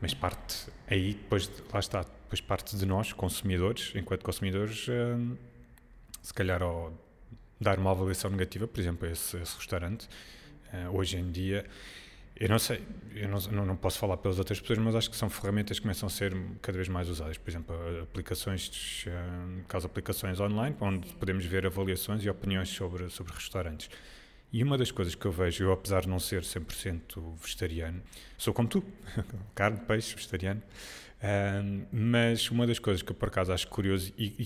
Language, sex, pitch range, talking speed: Portuguese, male, 90-105 Hz, 175 wpm